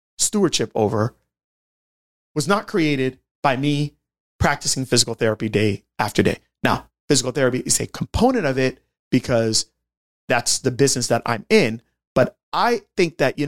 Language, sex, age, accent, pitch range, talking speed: English, male, 30-49, American, 110-150 Hz, 145 wpm